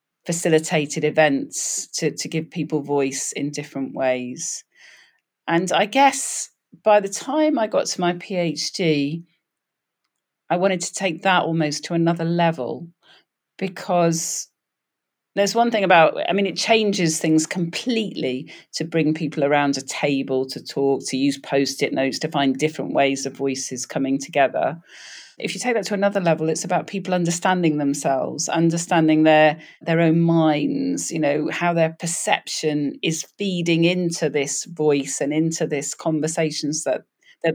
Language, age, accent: English, 40-59, British